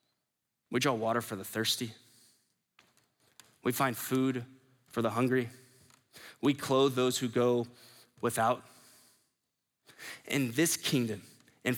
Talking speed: 110 wpm